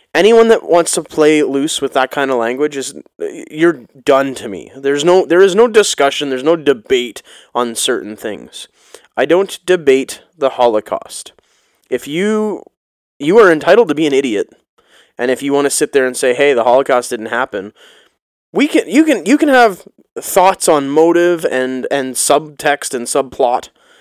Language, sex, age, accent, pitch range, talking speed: English, male, 20-39, American, 135-210 Hz, 175 wpm